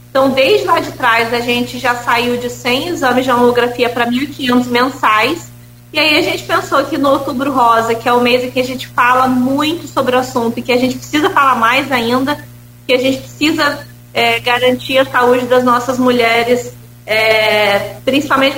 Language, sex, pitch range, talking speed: Portuguese, female, 230-265 Hz, 195 wpm